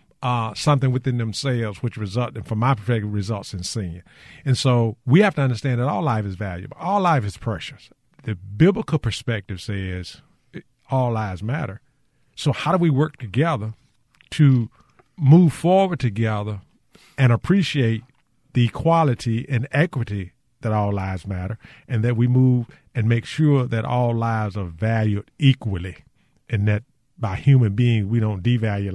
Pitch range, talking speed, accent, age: 105-135 Hz, 155 wpm, American, 50-69